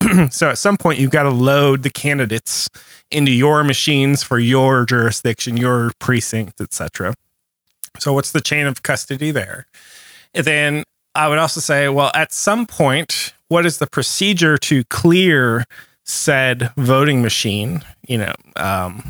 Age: 30-49